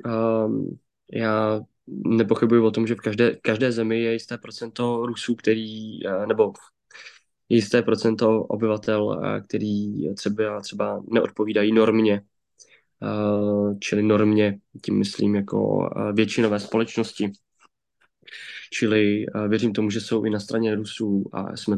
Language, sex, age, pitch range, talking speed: Slovak, male, 20-39, 105-115 Hz, 115 wpm